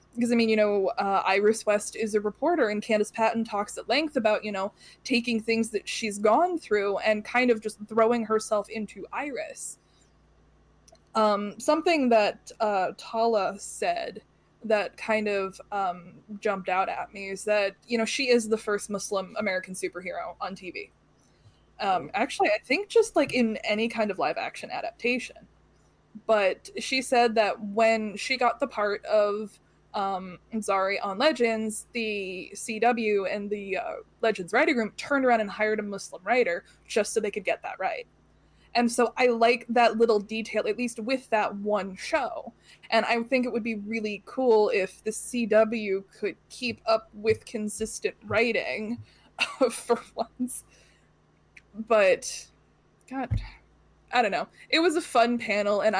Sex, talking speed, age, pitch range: female, 165 wpm, 20-39, 205-240 Hz